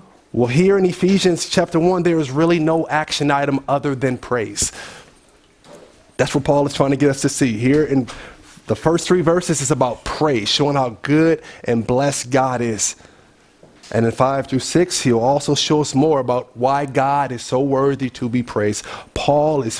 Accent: American